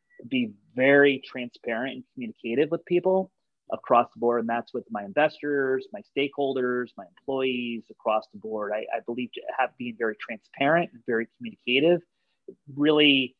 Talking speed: 150 wpm